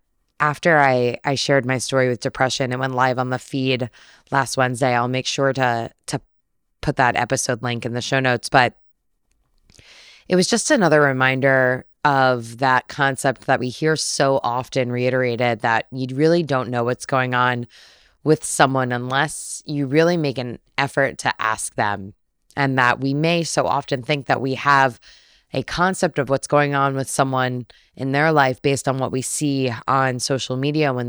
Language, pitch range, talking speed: English, 125-140 Hz, 180 wpm